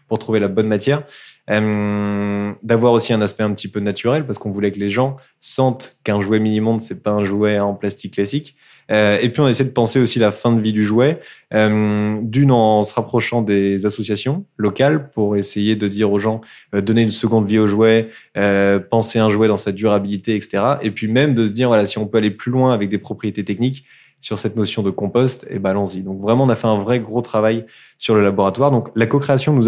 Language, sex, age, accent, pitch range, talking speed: French, male, 20-39, French, 105-120 Hz, 235 wpm